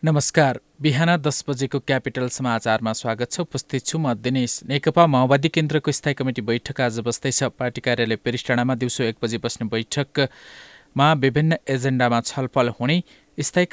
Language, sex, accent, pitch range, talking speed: English, male, Indian, 115-145 Hz, 90 wpm